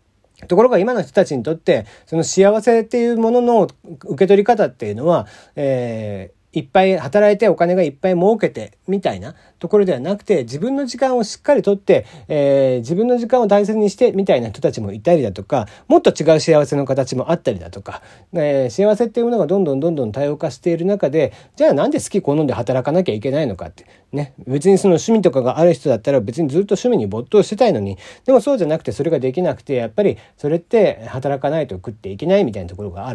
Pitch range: 125-190 Hz